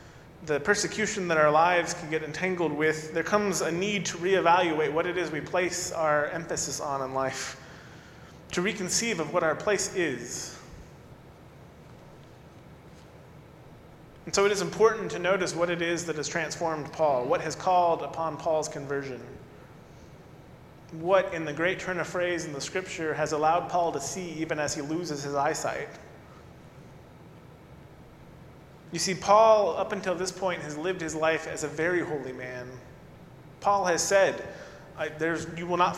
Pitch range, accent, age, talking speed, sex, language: 155-190 Hz, American, 30-49, 160 wpm, male, English